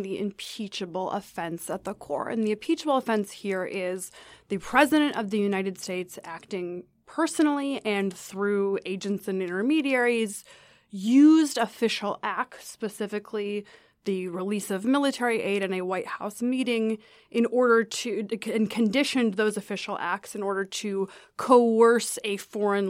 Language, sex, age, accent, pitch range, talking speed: English, female, 20-39, American, 195-240 Hz, 140 wpm